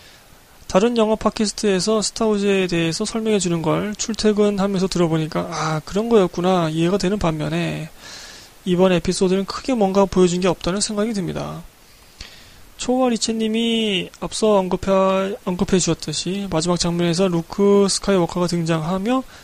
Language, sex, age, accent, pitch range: Korean, male, 20-39, native, 170-215 Hz